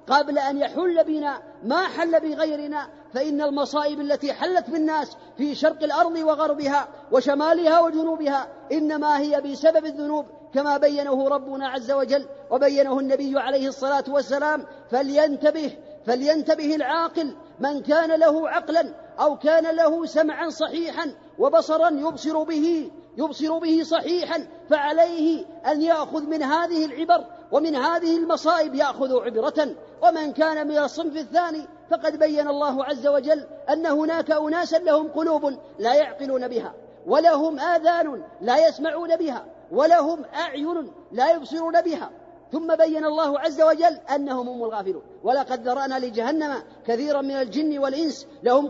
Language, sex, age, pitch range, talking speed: Arabic, female, 40-59, 280-320 Hz, 130 wpm